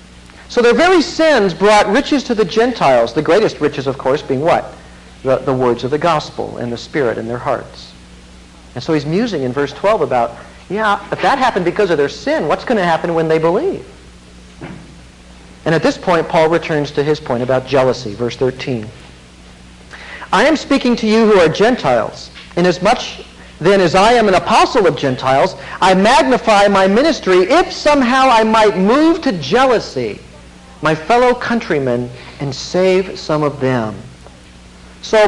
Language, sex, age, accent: English, male, 50-69, American